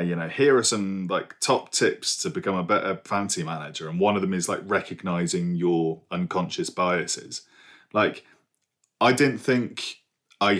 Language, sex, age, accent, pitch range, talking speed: English, male, 30-49, British, 85-110 Hz, 165 wpm